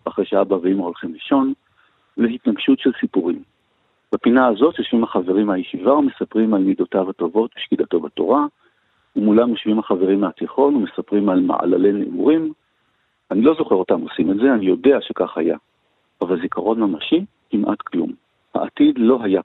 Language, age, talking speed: Hebrew, 50-69, 140 wpm